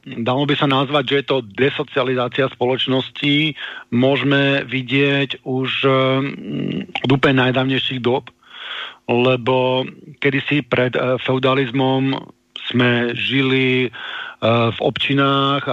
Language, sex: Slovak, male